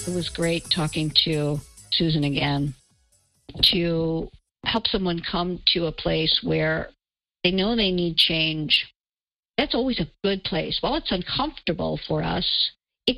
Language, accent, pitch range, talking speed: English, American, 165-195 Hz, 140 wpm